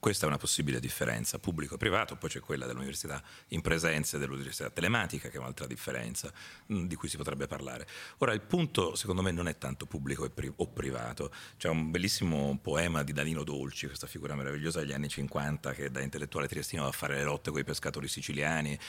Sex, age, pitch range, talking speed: male, 40-59, 70-95 Hz, 210 wpm